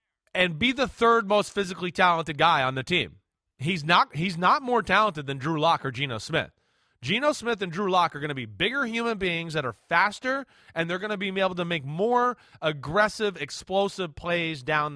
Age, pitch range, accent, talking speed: 30-49, 155-215 Hz, American, 205 wpm